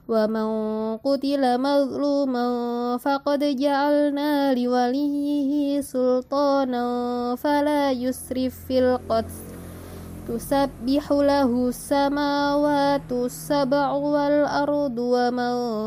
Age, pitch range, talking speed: 20-39, 245-285 Hz, 65 wpm